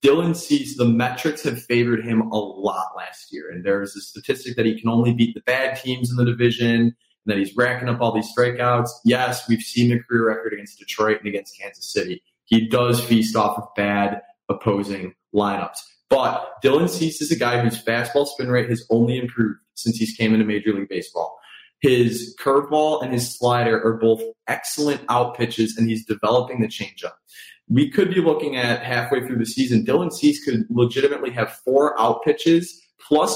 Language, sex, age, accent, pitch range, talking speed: English, male, 20-39, American, 115-135 Hz, 195 wpm